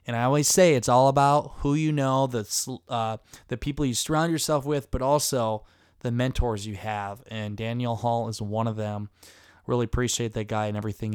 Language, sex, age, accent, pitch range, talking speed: English, male, 20-39, American, 115-140 Hz, 200 wpm